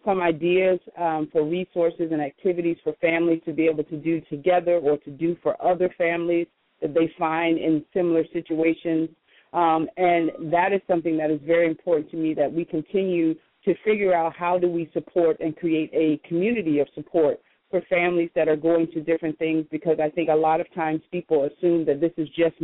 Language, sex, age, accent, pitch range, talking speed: English, female, 40-59, American, 155-170 Hz, 200 wpm